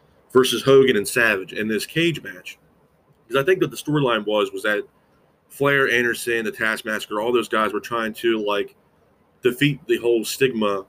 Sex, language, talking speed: male, English, 175 wpm